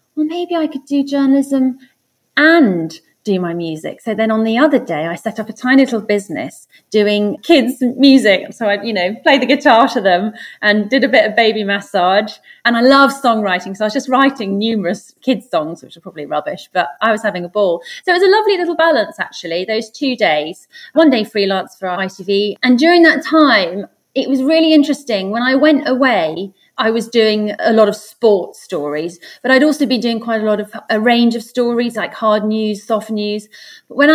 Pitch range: 200-270 Hz